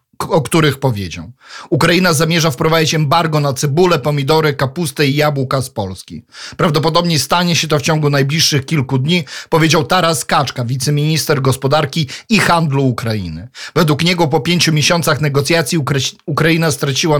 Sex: male